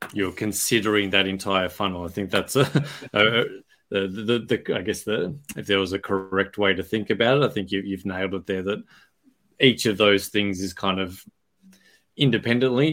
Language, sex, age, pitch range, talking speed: English, male, 20-39, 95-105 Hz, 195 wpm